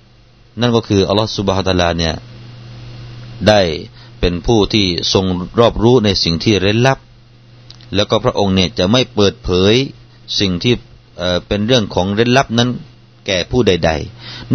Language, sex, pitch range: Thai, male, 100-120 Hz